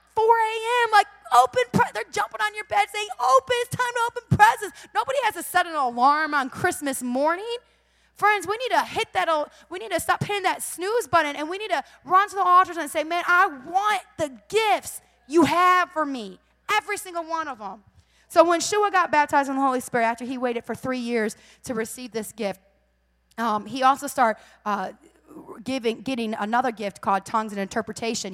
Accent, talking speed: American, 205 wpm